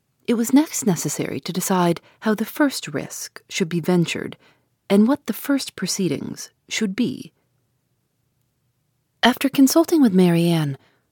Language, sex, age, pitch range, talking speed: English, female, 40-59, 150-220 Hz, 130 wpm